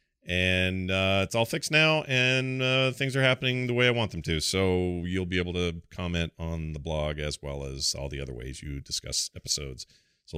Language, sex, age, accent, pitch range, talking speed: English, male, 40-59, American, 95-140 Hz, 215 wpm